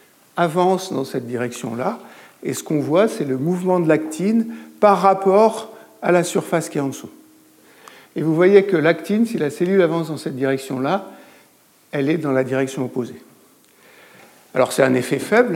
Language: French